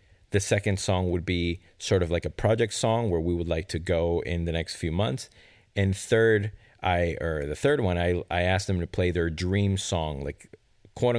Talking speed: 215 wpm